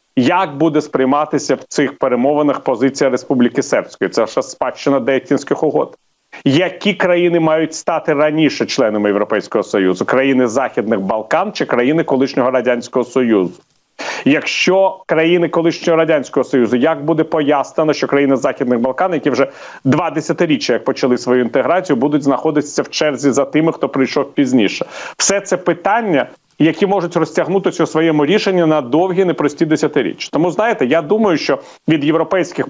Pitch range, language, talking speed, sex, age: 140-180 Hz, Ukrainian, 145 wpm, male, 40-59